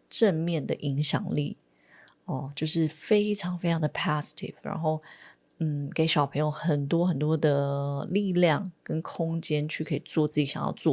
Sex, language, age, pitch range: female, Chinese, 20-39, 150-185 Hz